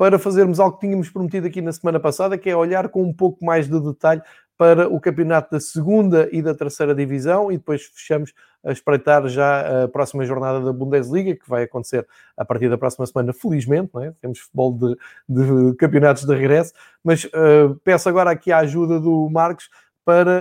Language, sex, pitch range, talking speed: Portuguese, male, 140-170 Hz, 195 wpm